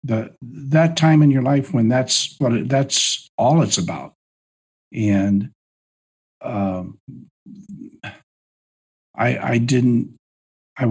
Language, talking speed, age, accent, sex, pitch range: English, 110 wpm, 50-69, American, male, 100-130 Hz